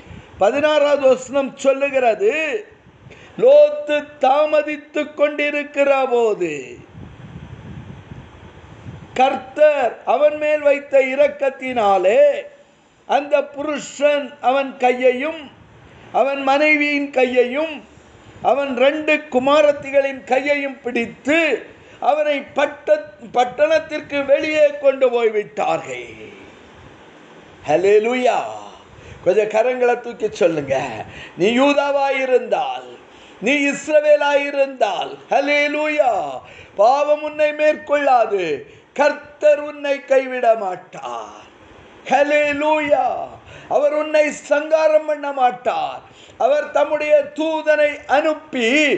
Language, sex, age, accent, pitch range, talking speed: Tamil, male, 50-69, native, 255-300 Hz, 45 wpm